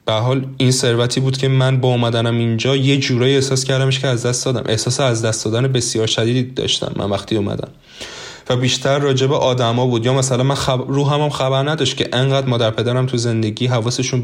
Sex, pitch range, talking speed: male, 120-140 Hz, 210 wpm